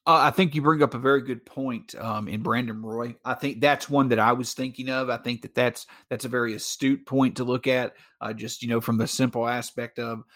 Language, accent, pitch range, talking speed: English, American, 130-185 Hz, 255 wpm